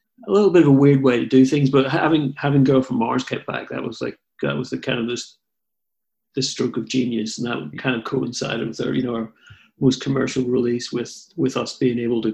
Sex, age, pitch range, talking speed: male, 40-59, 120-135 Hz, 250 wpm